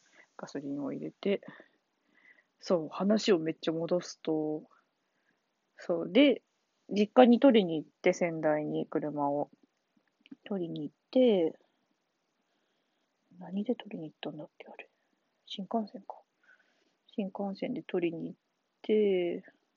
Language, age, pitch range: Japanese, 30-49, 170-230 Hz